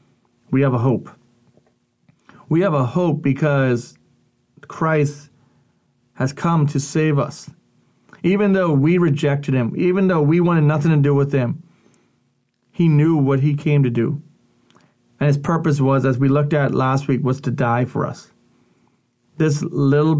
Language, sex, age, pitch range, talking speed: English, male, 40-59, 130-155 Hz, 155 wpm